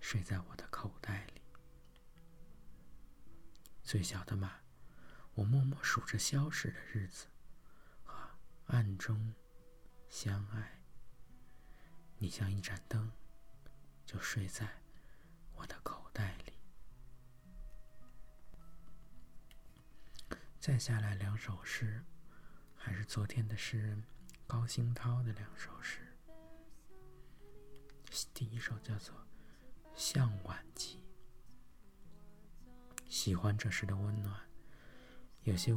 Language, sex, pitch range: Chinese, male, 95-125 Hz